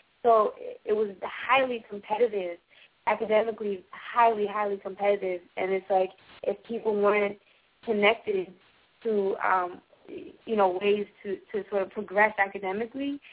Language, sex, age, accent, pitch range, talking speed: English, female, 20-39, American, 190-210 Hz, 120 wpm